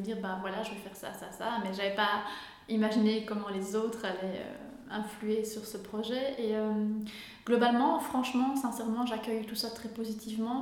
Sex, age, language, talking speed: female, 20-39, French, 185 wpm